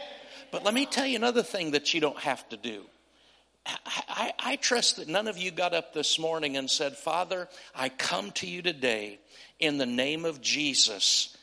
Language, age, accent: English, 50-69, American